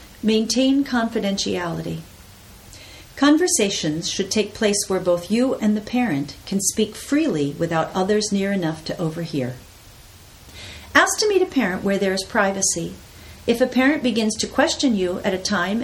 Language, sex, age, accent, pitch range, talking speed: English, female, 50-69, American, 170-240 Hz, 150 wpm